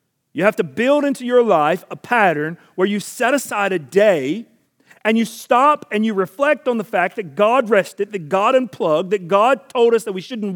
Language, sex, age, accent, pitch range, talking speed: English, male, 40-59, American, 180-235 Hz, 210 wpm